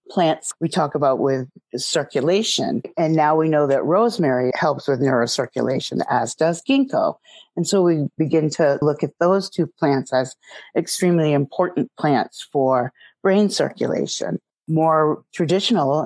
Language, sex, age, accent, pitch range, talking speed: English, female, 40-59, American, 140-175 Hz, 140 wpm